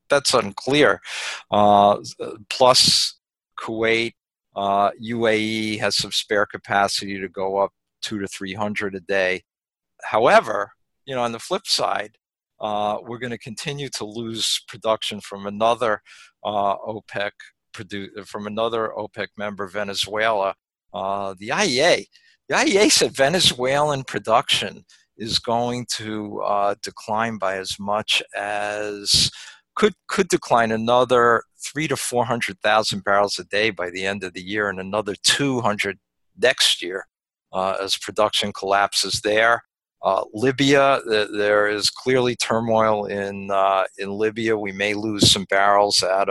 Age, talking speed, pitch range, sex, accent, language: 50-69, 140 wpm, 100-115 Hz, male, American, English